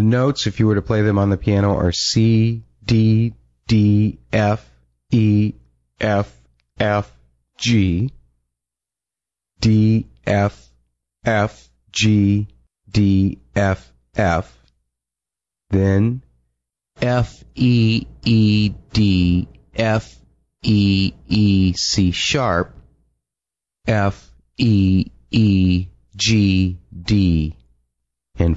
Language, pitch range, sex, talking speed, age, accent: English, 75-110 Hz, male, 90 wpm, 30-49, American